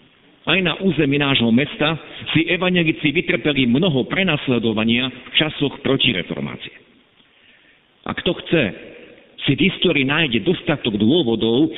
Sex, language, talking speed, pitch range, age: male, Slovak, 110 wpm, 130-180 Hz, 50-69